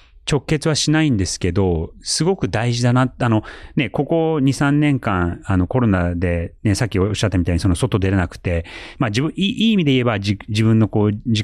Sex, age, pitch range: male, 30-49, 95-135 Hz